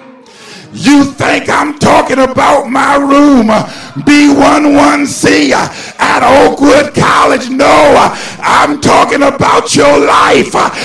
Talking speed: 95 wpm